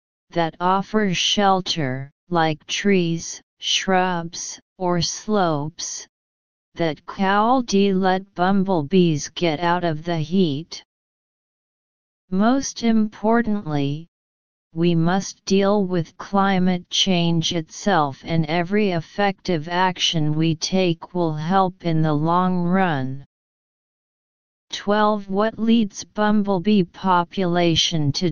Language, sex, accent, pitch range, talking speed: English, female, American, 165-205 Hz, 95 wpm